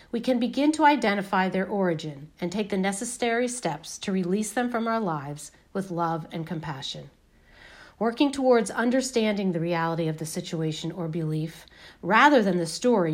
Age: 40-59